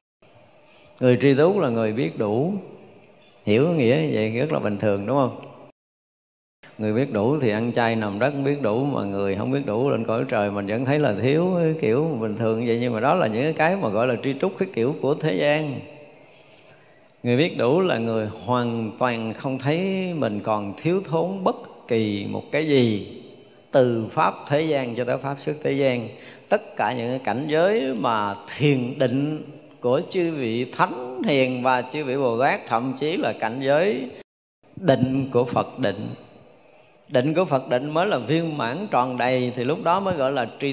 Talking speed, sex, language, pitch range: 200 wpm, male, Vietnamese, 120-160 Hz